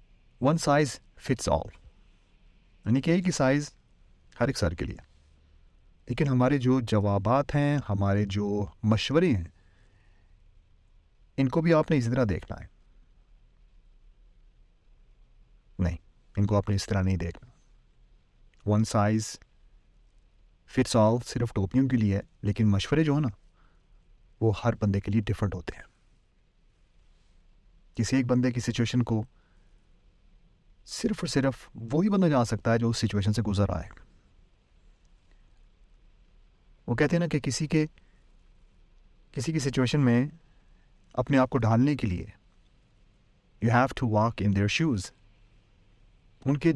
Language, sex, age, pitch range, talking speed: Urdu, male, 30-49, 90-130 Hz, 120 wpm